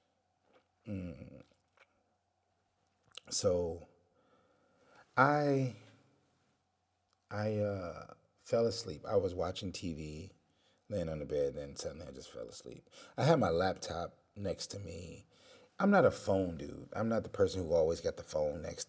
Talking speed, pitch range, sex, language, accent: 135 wpm, 95-130 Hz, male, English, American